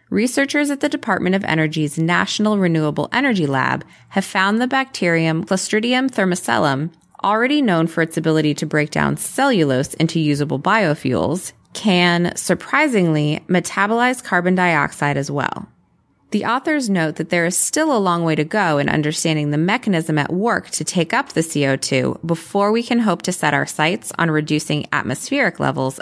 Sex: female